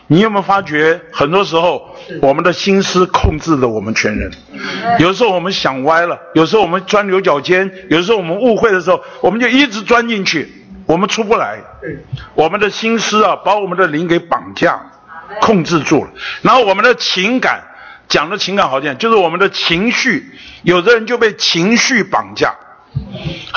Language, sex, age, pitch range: Chinese, male, 50-69, 155-215 Hz